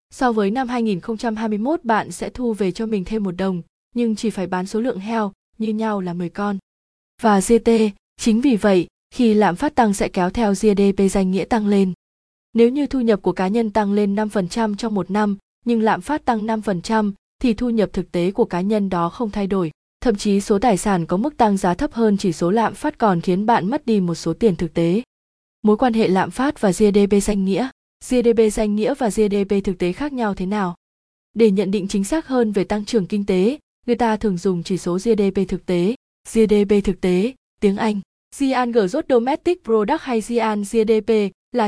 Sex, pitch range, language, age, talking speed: female, 195-230 Hz, Vietnamese, 20-39, 210 wpm